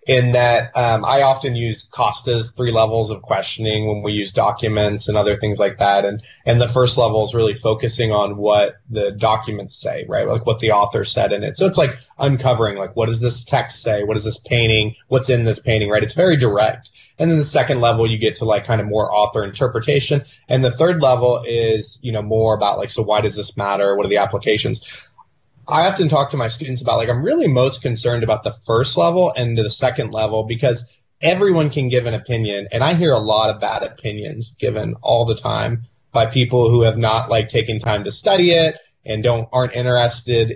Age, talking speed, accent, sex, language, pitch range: 20-39, 220 wpm, American, male, English, 110-130 Hz